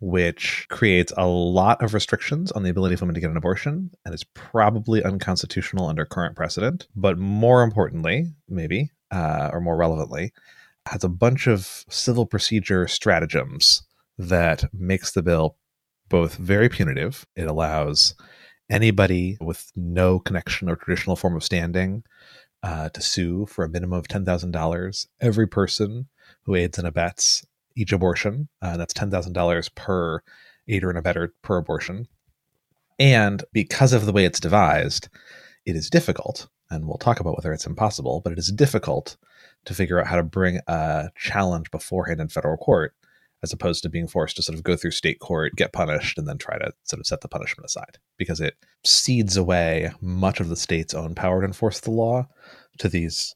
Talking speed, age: 175 wpm, 30-49